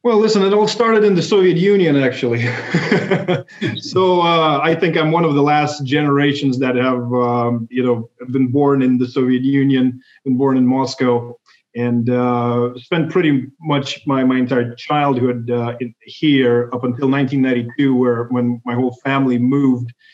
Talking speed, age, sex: 165 wpm, 30-49, male